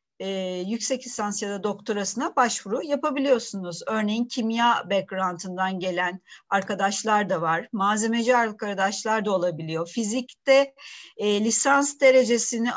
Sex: female